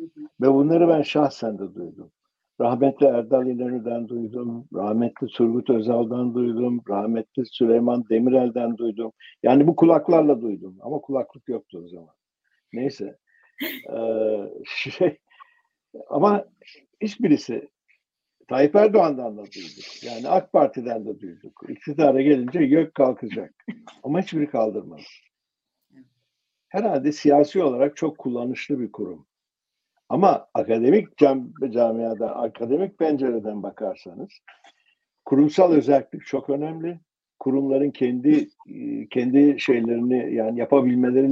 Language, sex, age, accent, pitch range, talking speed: Turkish, male, 60-79, native, 115-160 Hz, 105 wpm